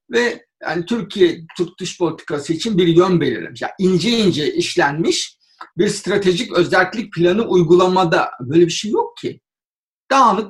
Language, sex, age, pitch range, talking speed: Turkish, male, 50-69, 175-245 Hz, 145 wpm